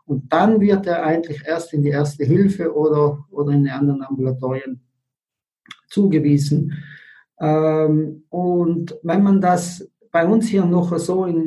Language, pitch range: German, 145-175 Hz